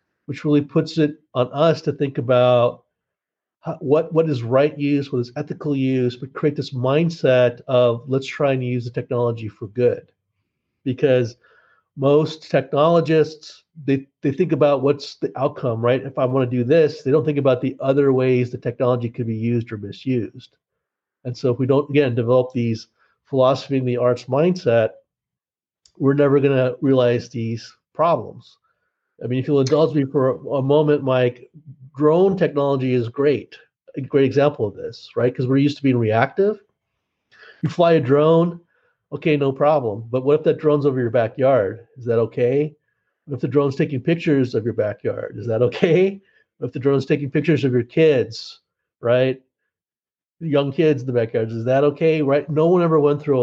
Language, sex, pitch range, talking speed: English, male, 125-150 Hz, 180 wpm